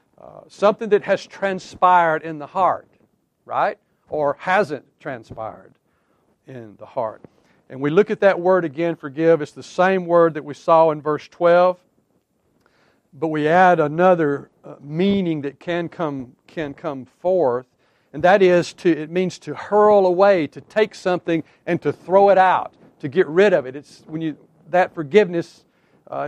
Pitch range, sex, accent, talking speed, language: 140-180 Hz, male, American, 165 wpm, English